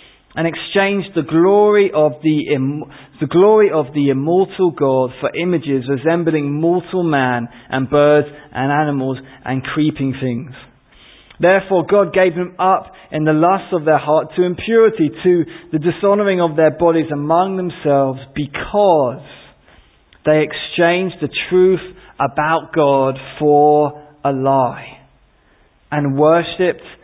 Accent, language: British, English